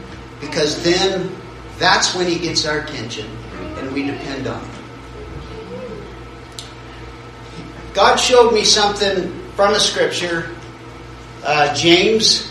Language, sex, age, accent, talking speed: English, male, 50-69, American, 105 wpm